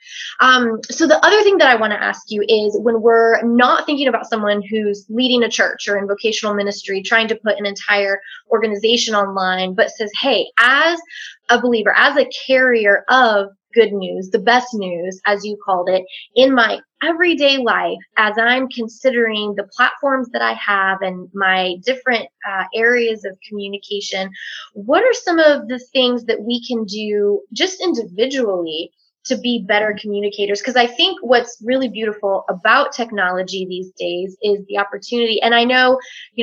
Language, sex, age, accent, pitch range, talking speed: English, female, 20-39, American, 195-245 Hz, 170 wpm